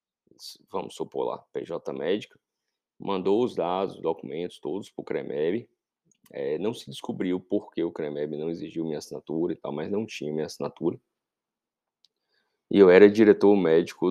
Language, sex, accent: Portuguese, male, Brazilian